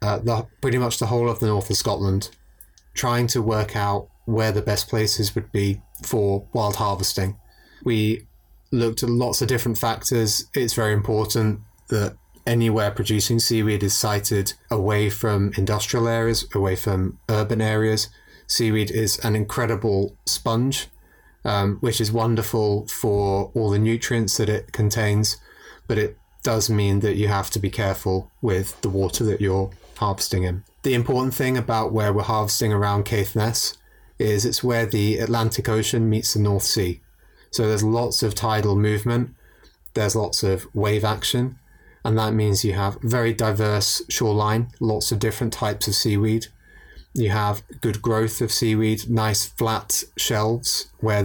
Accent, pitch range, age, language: British, 105-115 Hz, 30-49, English